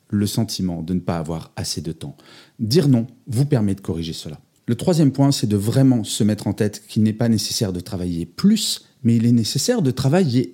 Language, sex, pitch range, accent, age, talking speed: French, male, 110-150 Hz, French, 40-59, 220 wpm